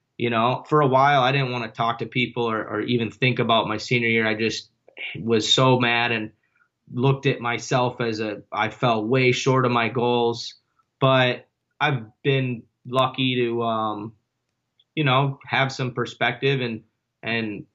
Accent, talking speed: American, 170 wpm